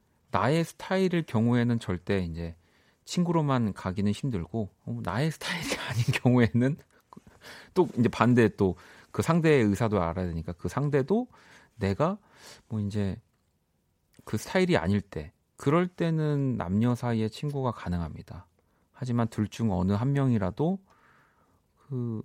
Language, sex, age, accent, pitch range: Korean, male, 40-59, native, 95-145 Hz